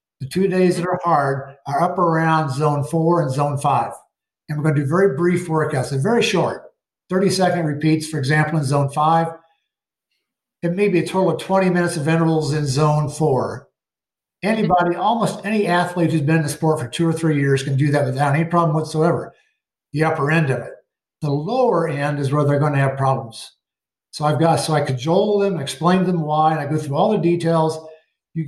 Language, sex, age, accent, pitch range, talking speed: English, male, 50-69, American, 150-170 Hz, 210 wpm